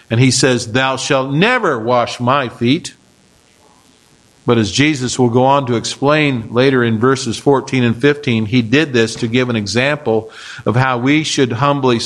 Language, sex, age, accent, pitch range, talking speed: English, male, 50-69, American, 120-150 Hz, 175 wpm